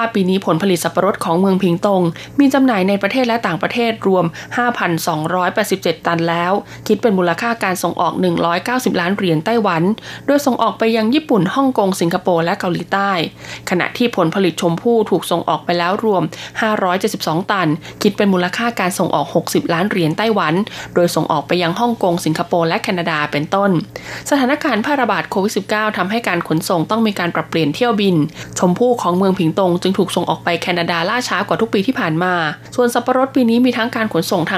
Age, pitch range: 20-39, 170-225 Hz